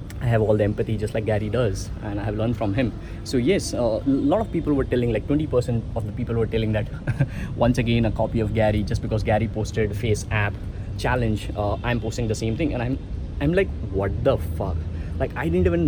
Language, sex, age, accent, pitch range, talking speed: English, male, 20-39, Indian, 105-135 Hz, 235 wpm